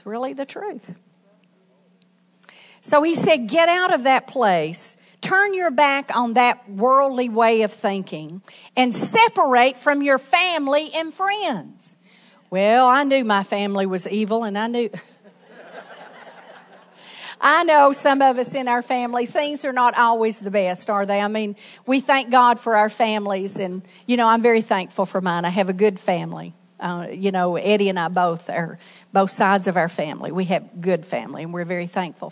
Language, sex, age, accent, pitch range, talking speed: English, female, 50-69, American, 185-245 Hz, 175 wpm